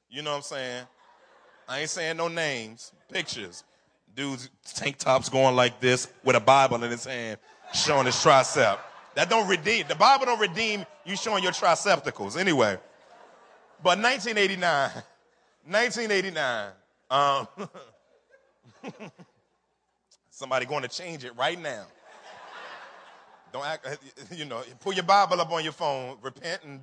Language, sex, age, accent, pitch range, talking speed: English, male, 30-49, American, 145-190 Hz, 140 wpm